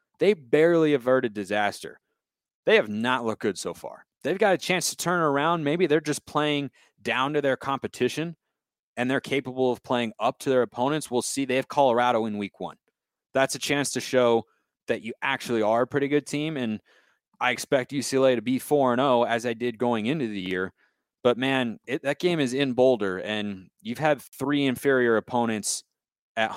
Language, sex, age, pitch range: English, male, 30-49, 115-140 Hz